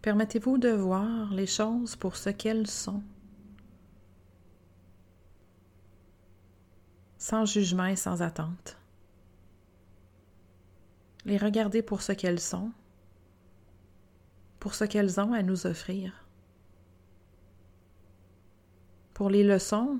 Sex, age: female, 30-49